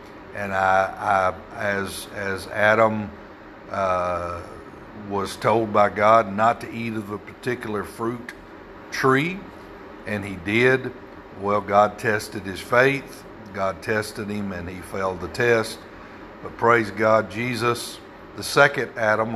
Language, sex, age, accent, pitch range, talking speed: English, male, 60-79, American, 100-115 Hz, 130 wpm